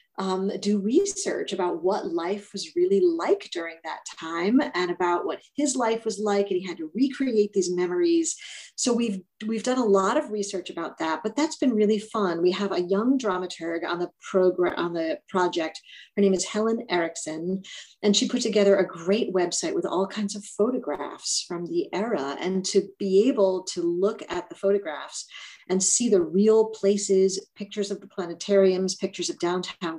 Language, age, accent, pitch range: English, 40-59, American, 175-225 Hz